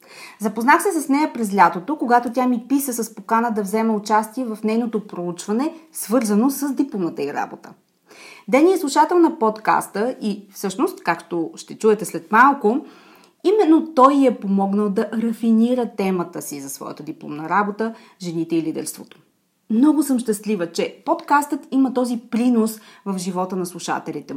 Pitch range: 205-275 Hz